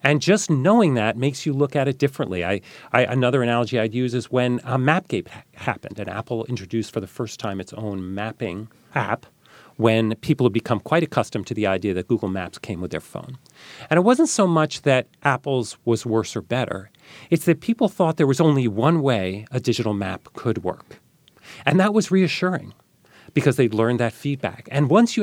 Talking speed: 205 wpm